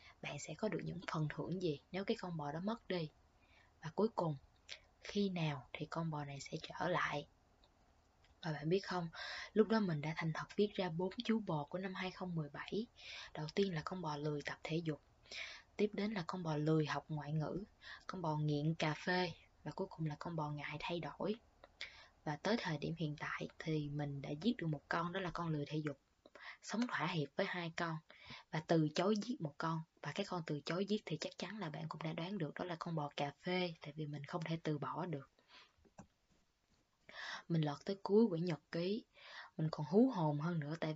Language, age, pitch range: Vietnamese, 20-39, 150-185 Hz